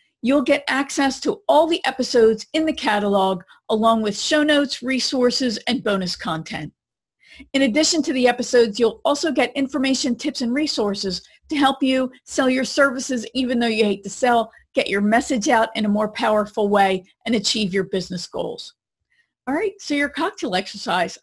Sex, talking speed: female, 175 wpm